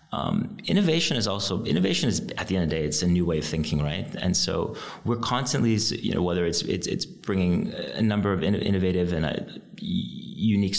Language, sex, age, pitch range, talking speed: English, male, 30-49, 80-100 Hz, 205 wpm